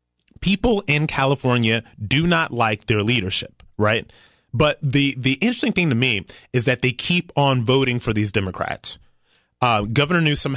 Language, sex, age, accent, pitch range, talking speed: English, male, 30-49, American, 110-145 Hz, 160 wpm